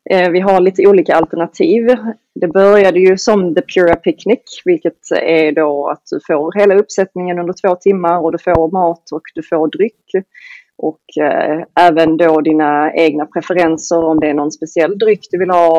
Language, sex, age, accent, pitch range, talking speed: Swedish, female, 30-49, native, 160-195 Hz, 180 wpm